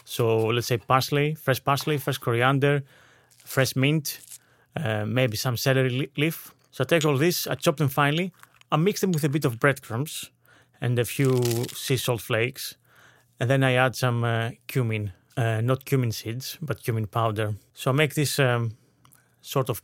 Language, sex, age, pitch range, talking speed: English, male, 30-49, 115-140 Hz, 180 wpm